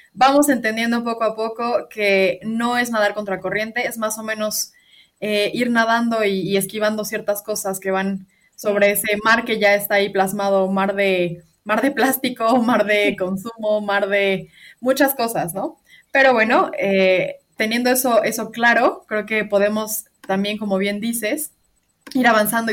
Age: 20-39